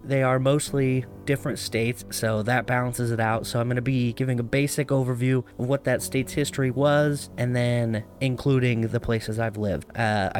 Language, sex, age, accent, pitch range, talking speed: English, male, 30-49, American, 115-140 Hz, 190 wpm